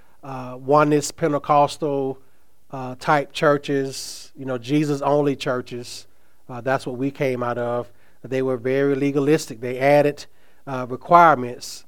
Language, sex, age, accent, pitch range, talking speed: English, male, 30-49, American, 125-145 Hz, 135 wpm